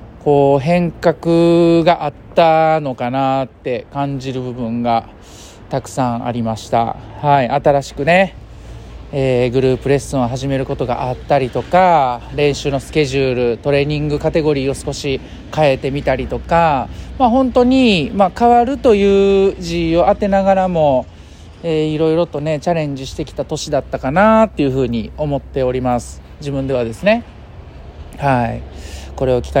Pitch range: 120-165 Hz